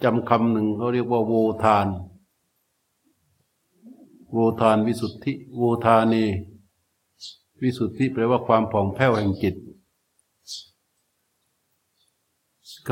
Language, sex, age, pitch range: Thai, male, 60-79, 95-120 Hz